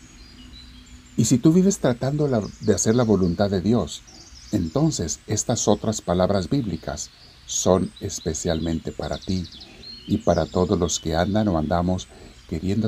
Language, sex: Spanish, male